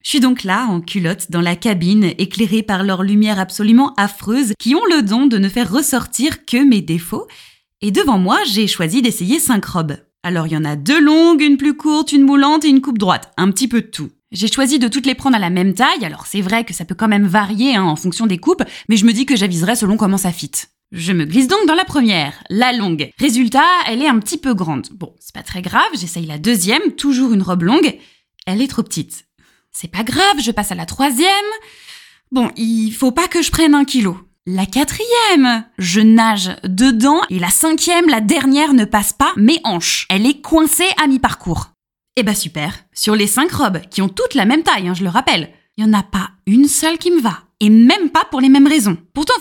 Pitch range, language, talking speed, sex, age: 190-275 Hz, French, 235 wpm, female, 20-39